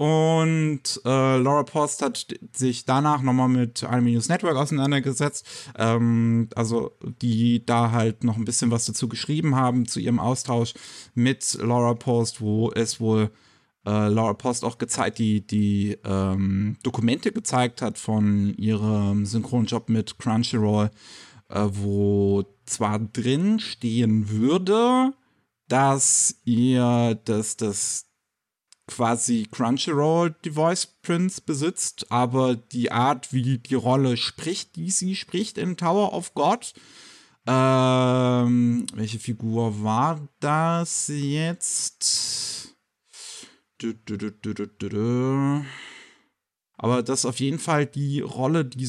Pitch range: 115-140 Hz